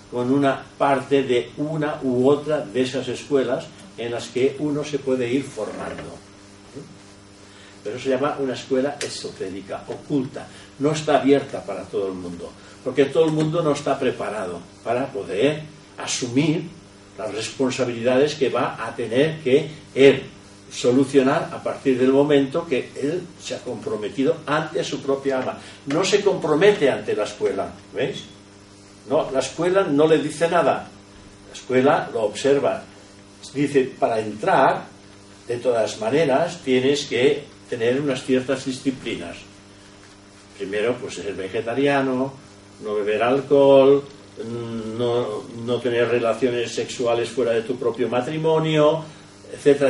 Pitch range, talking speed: 100-140 Hz, 135 wpm